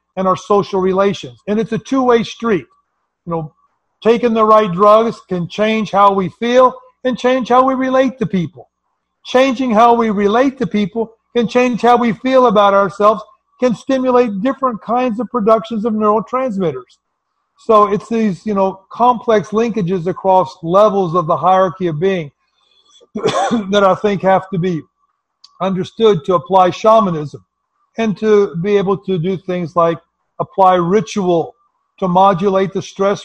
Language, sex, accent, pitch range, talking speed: English, male, American, 185-230 Hz, 155 wpm